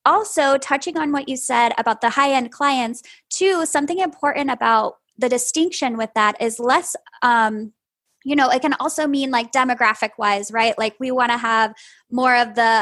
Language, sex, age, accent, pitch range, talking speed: English, female, 10-29, American, 230-280 Hz, 180 wpm